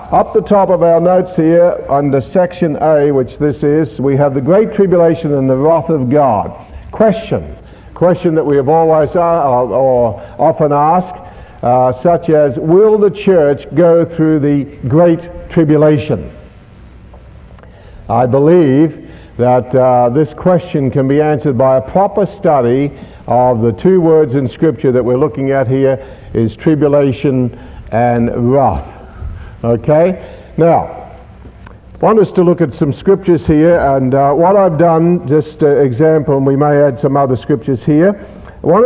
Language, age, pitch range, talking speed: English, 60-79, 135-175 Hz, 155 wpm